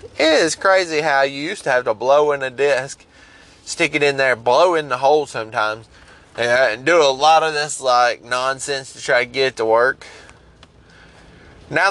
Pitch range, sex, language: 110-145 Hz, male, English